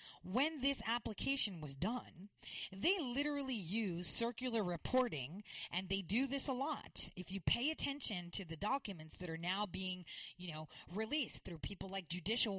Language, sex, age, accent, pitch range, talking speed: English, female, 40-59, American, 165-245 Hz, 160 wpm